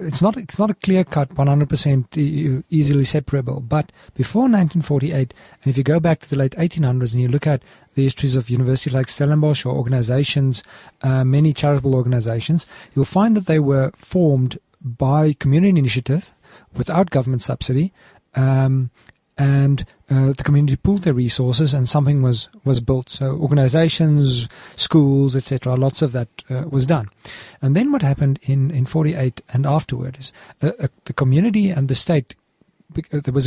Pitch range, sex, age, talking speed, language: 130-155 Hz, male, 40-59, 165 wpm, English